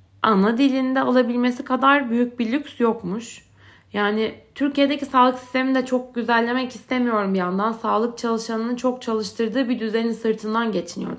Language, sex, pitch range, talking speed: Turkish, female, 215-270 Hz, 140 wpm